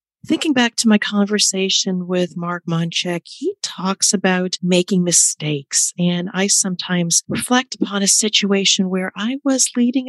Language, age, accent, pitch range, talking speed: English, 40-59, American, 180-220 Hz, 145 wpm